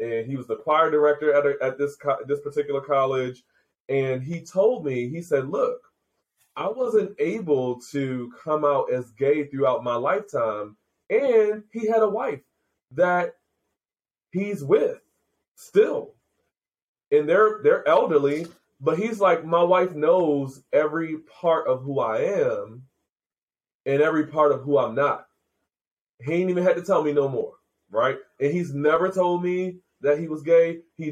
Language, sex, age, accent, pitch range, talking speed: English, male, 20-39, American, 140-225 Hz, 160 wpm